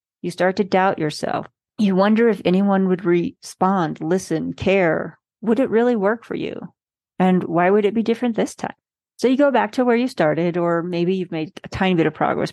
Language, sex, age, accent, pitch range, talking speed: English, female, 40-59, American, 170-210 Hz, 210 wpm